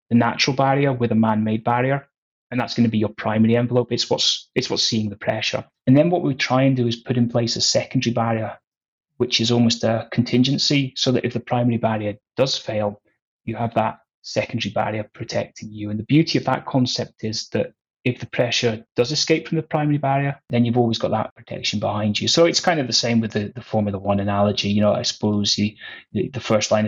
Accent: British